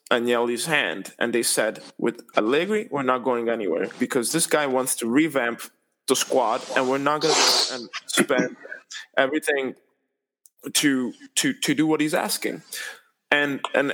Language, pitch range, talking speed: English, 130-175 Hz, 160 wpm